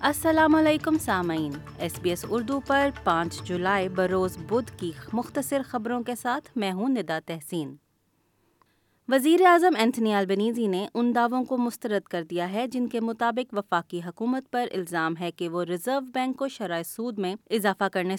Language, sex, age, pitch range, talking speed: Urdu, female, 30-49, 175-235 Hz, 170 wpm